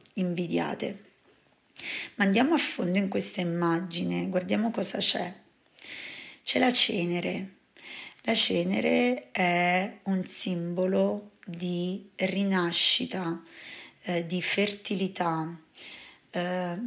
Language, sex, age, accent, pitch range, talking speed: Italian, female, 20-39, native, 175-200 Hz, 90 wpm